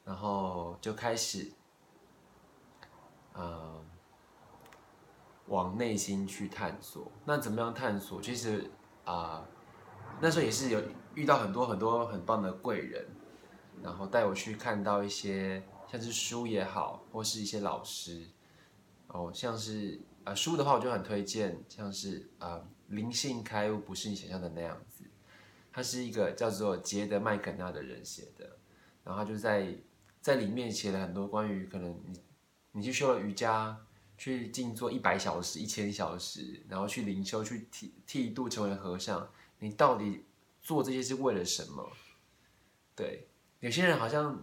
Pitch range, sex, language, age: 95-115 Hz, male, Chinese, 20-39